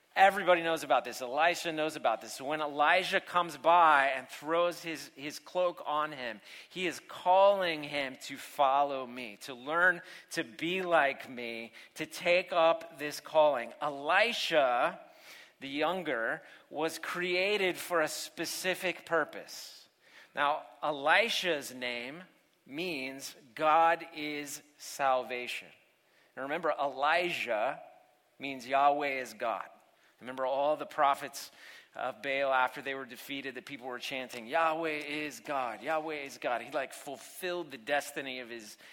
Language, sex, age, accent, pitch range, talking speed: English, male, 40-59, American, 130-165 Hz, 135 wpm